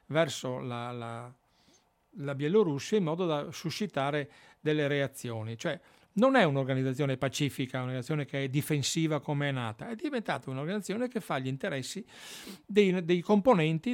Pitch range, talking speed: 130-190 Hz, 140 wpm